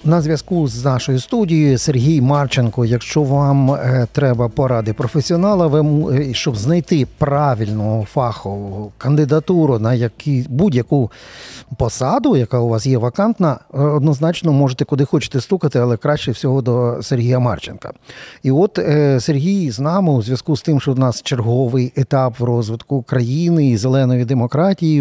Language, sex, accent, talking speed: Ukrainian, male, native, 140 wpm